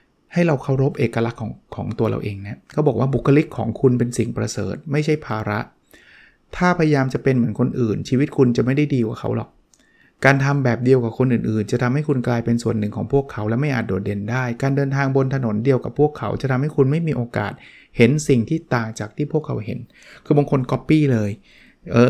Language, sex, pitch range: Thai, male, 115-145 Hz